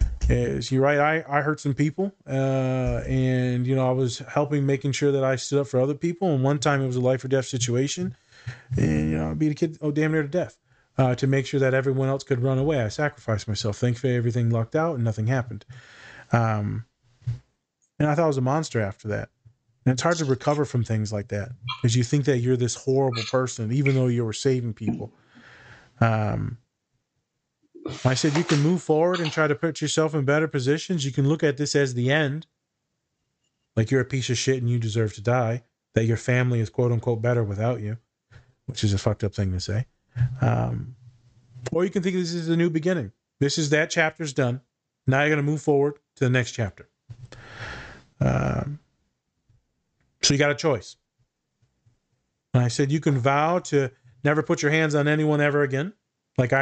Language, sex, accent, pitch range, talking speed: English, male, American, 120-150 Hz, 205 wpm